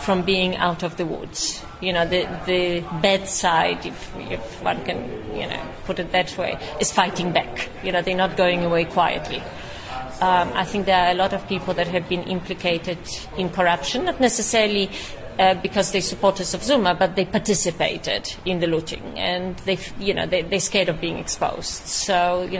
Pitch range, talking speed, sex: 170-190 Hz, 190 wpm, female